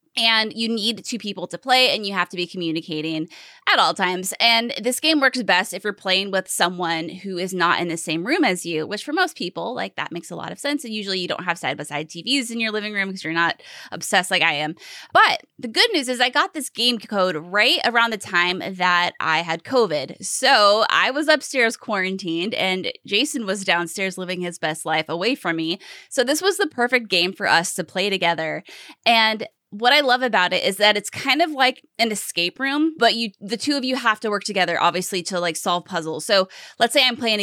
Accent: American